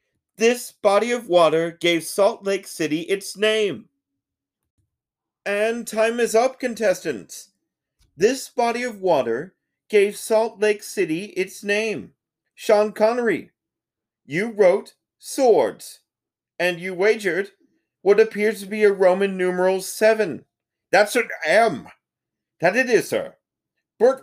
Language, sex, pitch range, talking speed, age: English, male, 180-240 Hz, 120 wpm, 40-59